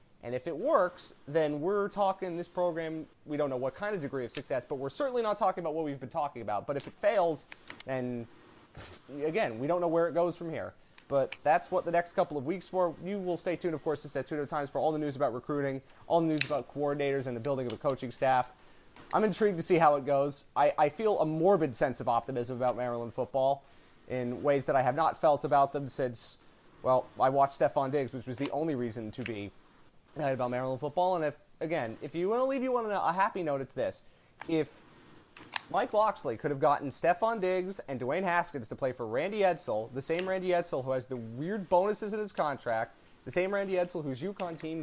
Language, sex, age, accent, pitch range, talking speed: English, male, 30-49, American, 130-180 Hz, 230 wpm